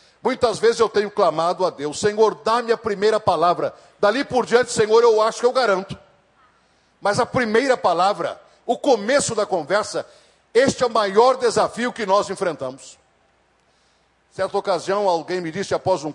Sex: male